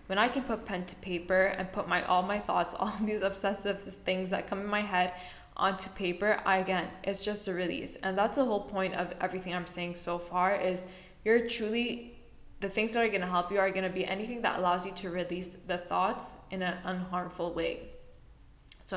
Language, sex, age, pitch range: English, female, 10-29, 180-205 Hz